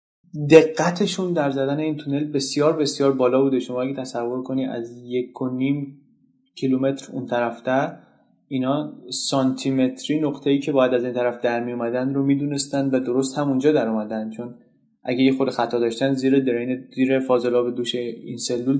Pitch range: 120-140 Hz